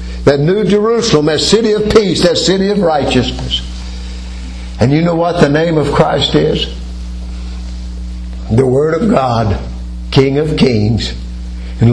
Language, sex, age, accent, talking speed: English, male, 60-79, American, 140 wpm